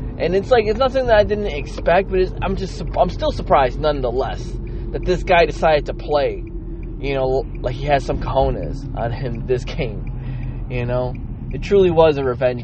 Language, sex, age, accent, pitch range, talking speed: English, male, 20-39, American, 120-145 Hz, 190 wpm